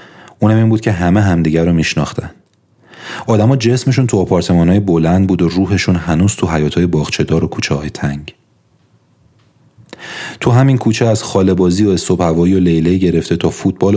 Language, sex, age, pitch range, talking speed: Persian, male, 30-49, 80-95 Hz, 170 wpm